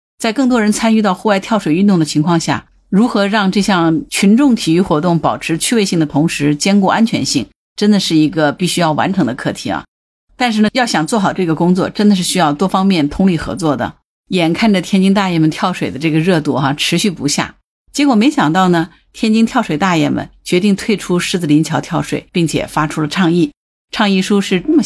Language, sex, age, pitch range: Chinese, female, 50-69, 155-210 Hz